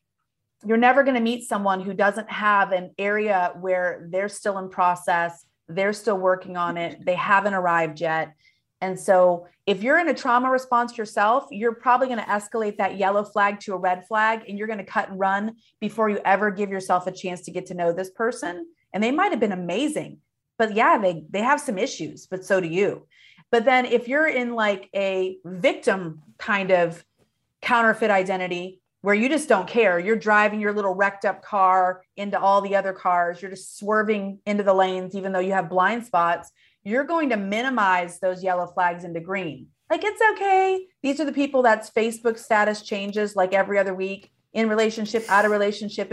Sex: female